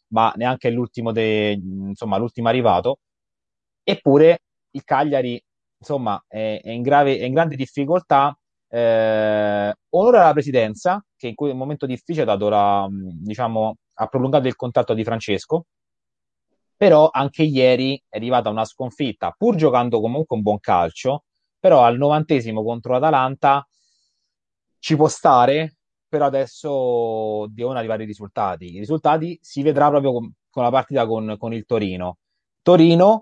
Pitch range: 110-145 Hz